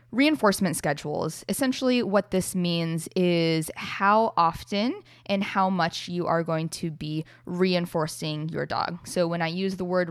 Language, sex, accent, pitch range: English, female, American, 160-190 Hz